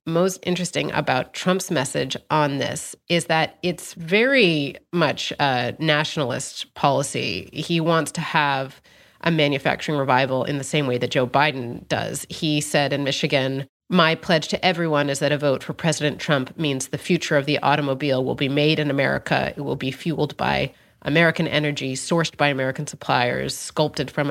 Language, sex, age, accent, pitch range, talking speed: English, female, 30-49, American, 135-165 Hz, 170 wpm